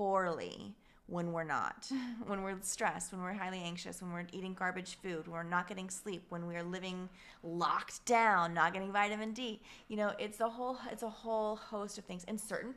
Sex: female